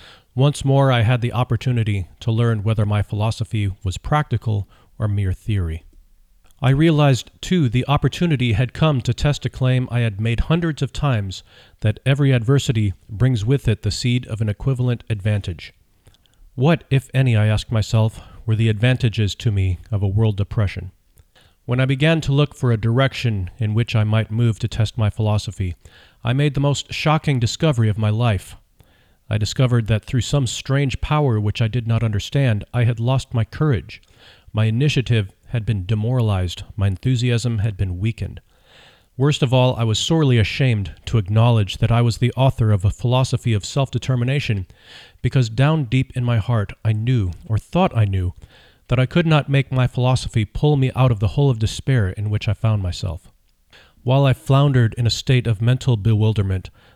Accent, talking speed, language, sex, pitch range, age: American, 180 wpm, English, male, 105-130 Hz, 40-59